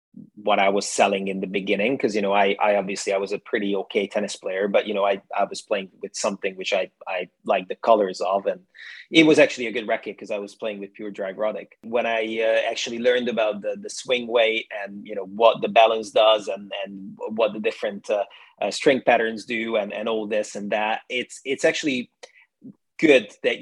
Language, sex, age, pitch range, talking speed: English, male, 30-49, 105-130 Hz, 225 wpm